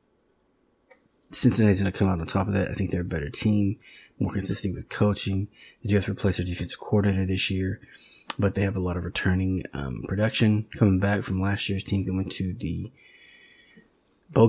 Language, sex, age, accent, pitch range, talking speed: English, male, 20-39, American, 95-105 Hz, 205 wpm